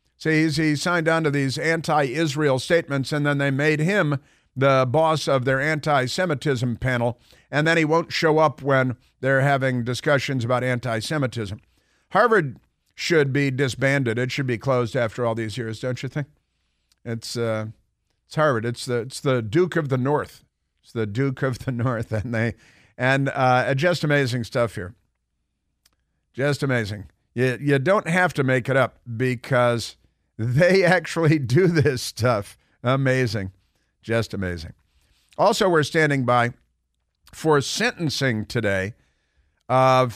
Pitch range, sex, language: 115-155 Hz, male, English